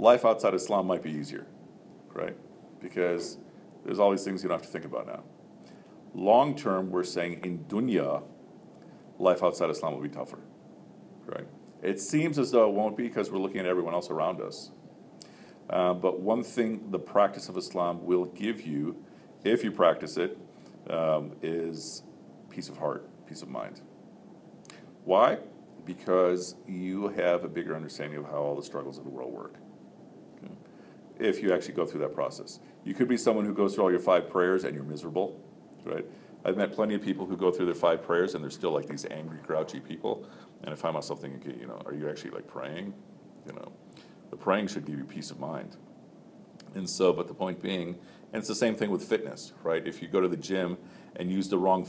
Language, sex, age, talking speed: English, male, 50-69, 200 wpm